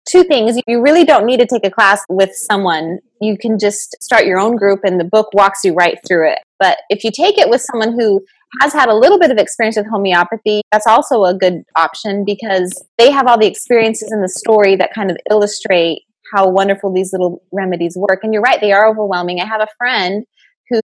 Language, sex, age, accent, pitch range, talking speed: English, female, 20-39, American, 190-240 Hz, 230 wpm